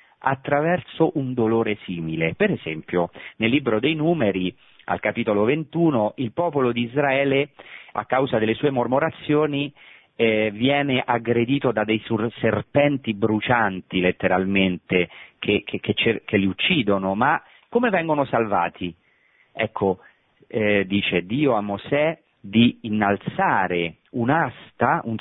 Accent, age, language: native, 40-59, Italian